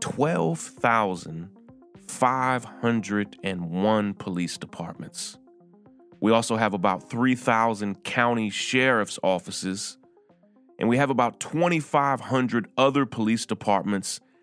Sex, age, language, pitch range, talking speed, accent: male, 30-49, English, 95-125 Hz, 80 wpm, American